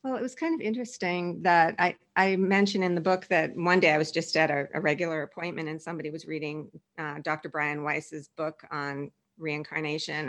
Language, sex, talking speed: English, female, 205 wpm